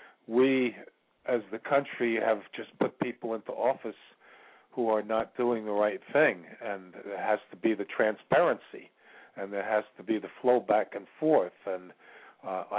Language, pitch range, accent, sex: English, 105-125 Hz, American, male